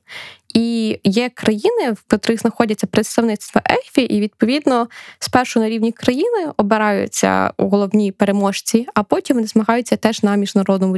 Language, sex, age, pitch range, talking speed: Ukrainian, female, 10-29, 205-250 Hz, 135 wpm